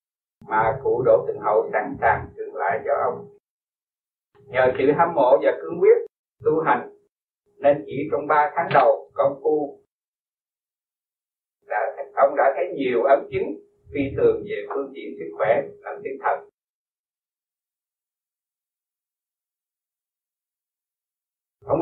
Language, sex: Vietnamese, male